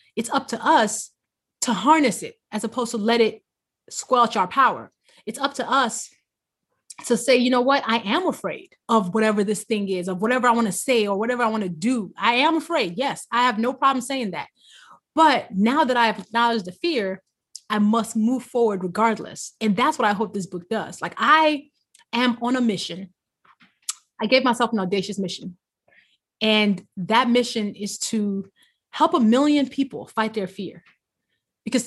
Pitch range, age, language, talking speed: 205-255 Hz, 20-39, English, 190 wpm